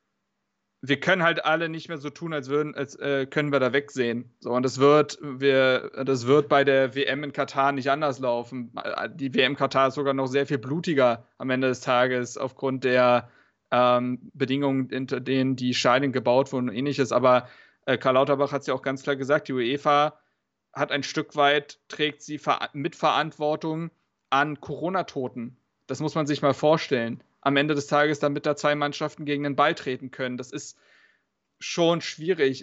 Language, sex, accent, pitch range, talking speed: German, male, German, 135-155 Hz, 190 wpm